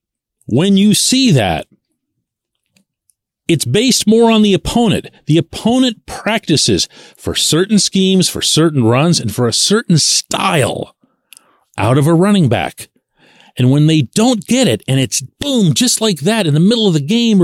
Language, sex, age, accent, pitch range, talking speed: English, male, 40-59, American, 150-215 Hz, 160 wpm